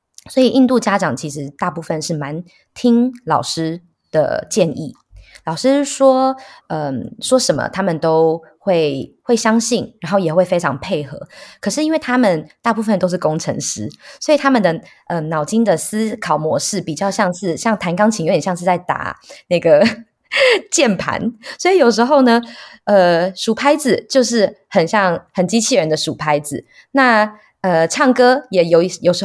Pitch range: 170-240 Hz